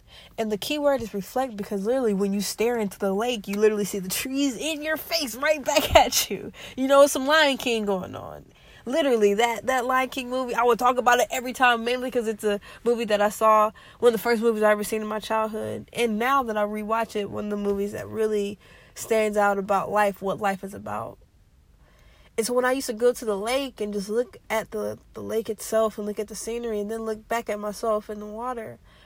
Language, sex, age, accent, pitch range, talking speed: English, female, 20-39, American, 215-255 Hz, 240 wpm